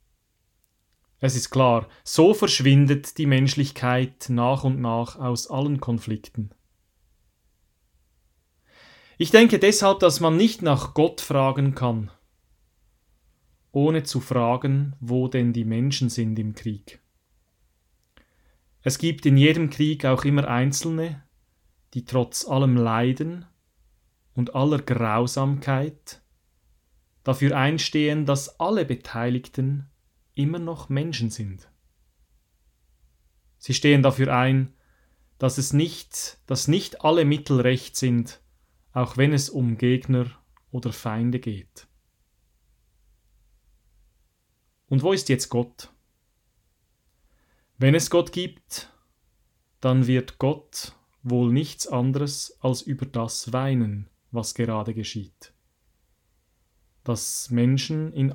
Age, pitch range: 30-49, 110-140 Hz